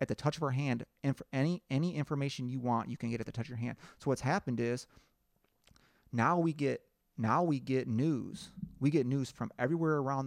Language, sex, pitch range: English, male, 120-150 Hz